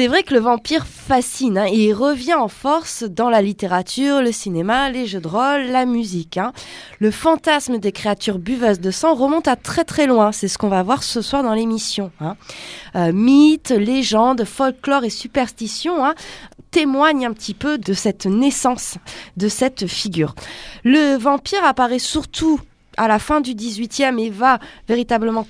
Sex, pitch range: female, 200-270 Hz